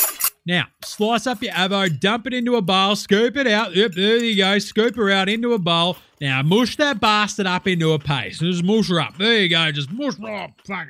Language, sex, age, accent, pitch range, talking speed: English, male, 30-49, Australian, 150-210 Hz, 235 wpm